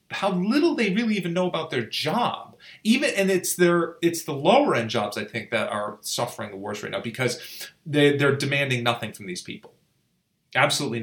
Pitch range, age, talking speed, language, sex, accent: 115-150 Hz, 30-49, 190 wpm, English, male, American